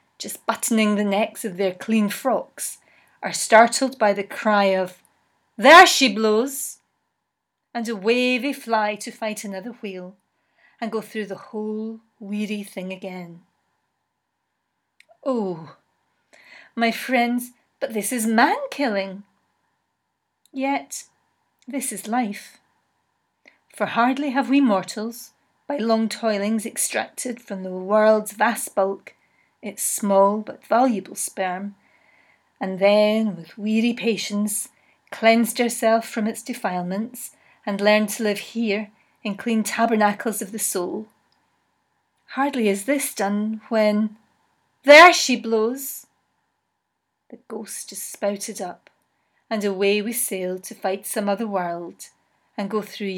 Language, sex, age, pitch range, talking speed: English, female, 30-49, 200-235 Hz, 125 wpm